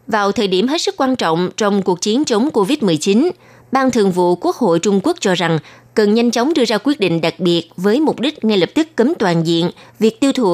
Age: 20-39